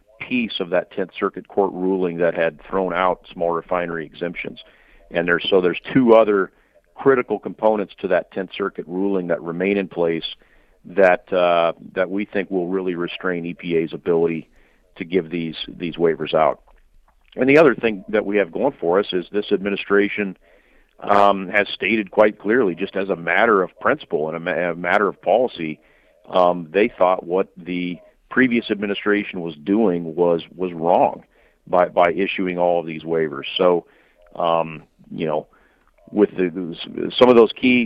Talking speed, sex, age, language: 170 wpm, male, 50-69, English